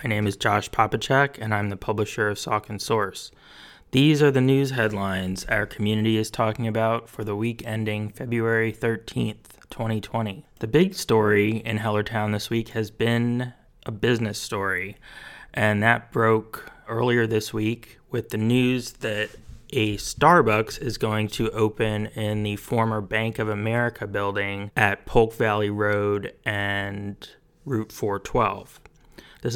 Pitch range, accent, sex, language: 105-115 Hz, American, male, English